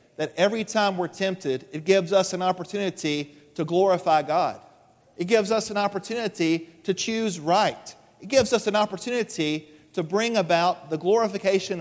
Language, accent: English, American